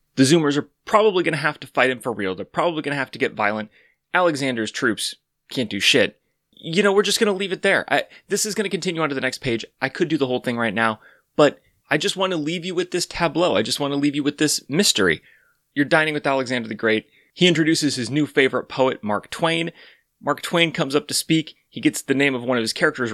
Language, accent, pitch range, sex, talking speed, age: English, American, 120-170 Hz, male, 260 wpm, 30-49